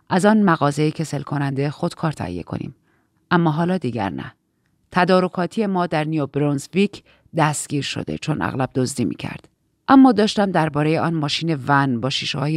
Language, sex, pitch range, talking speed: Persian, female, 130-175 Hz, 160 wpm